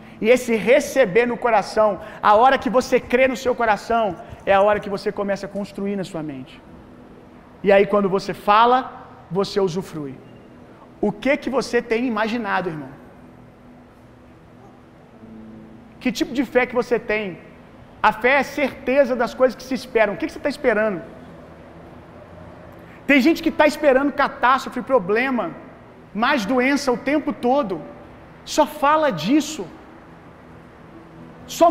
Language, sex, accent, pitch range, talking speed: Gujarati, male, Brazilian, 210-310 Hz, 150 wpm